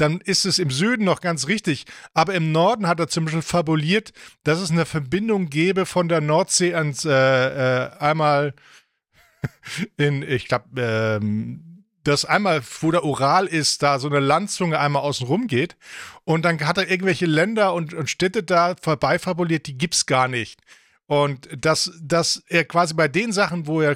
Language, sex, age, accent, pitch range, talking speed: English, male, 40-59, German, 145-180 Hz, 175 wpm